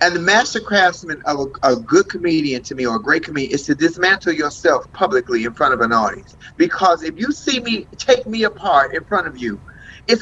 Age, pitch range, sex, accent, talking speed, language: 30-49, 195-265 Hz, male, American, 215 wpm, English